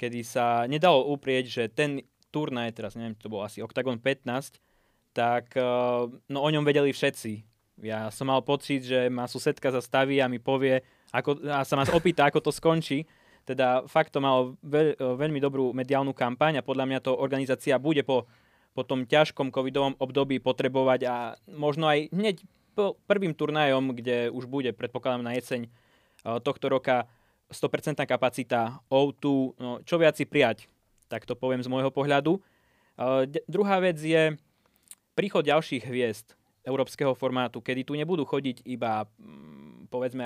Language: Slovak